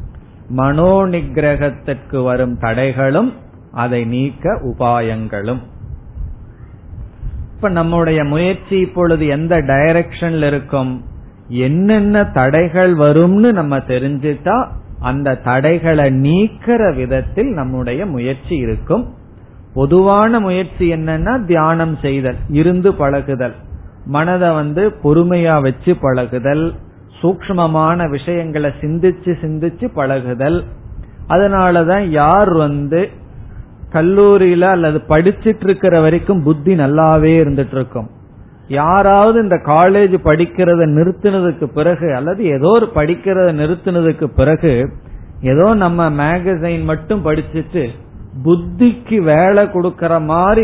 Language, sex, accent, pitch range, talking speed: Tamil, male, native, 130-175 Hz, 90 wpm